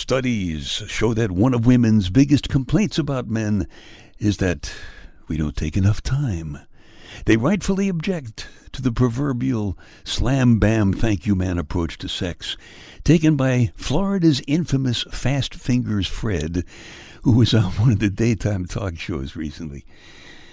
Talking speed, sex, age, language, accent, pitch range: 130 wpm, male, 60-79, English, American, 90-140 Hz